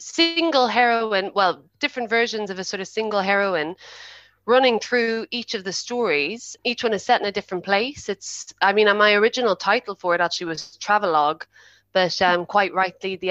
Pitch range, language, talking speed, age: 165-210 Hz, English, 185 wpm, 20-39